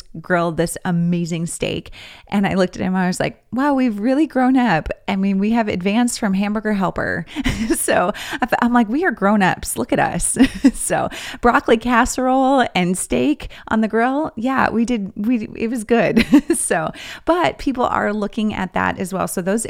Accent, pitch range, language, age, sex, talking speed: American, 185-235 Hz, English, 30-49, female, 190 wpm